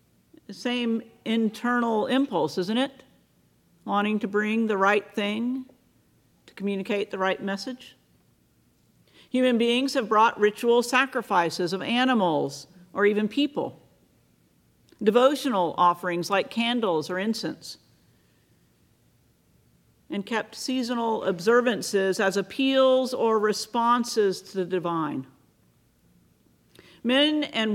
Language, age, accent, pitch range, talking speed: English, 50-69, American, 185-245 Hz, 100 wpm